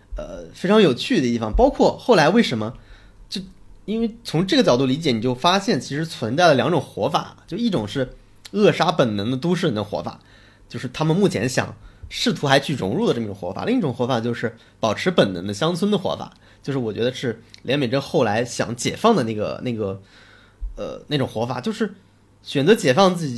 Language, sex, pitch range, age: Chinese, male, 115-180 Hz, 20-39